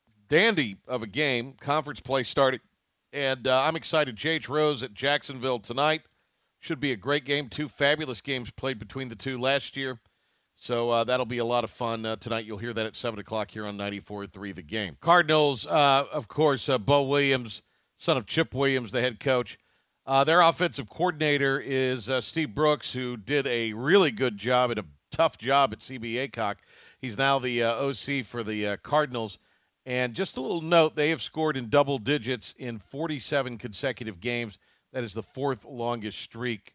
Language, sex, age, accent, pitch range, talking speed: English, male, 50-69, American, 115-145 Hz, 195 wpm